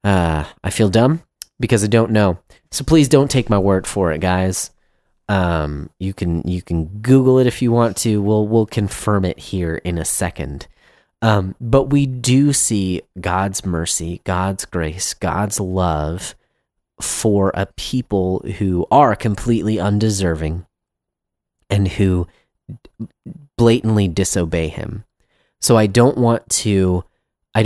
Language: English